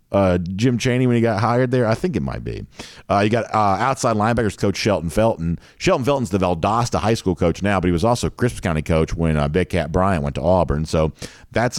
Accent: American